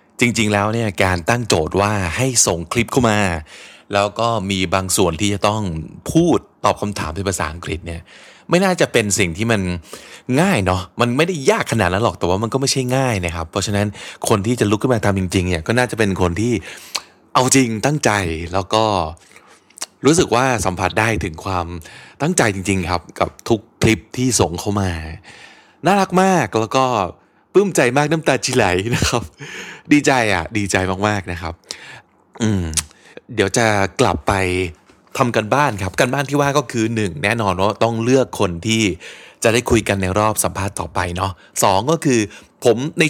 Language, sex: Thai, male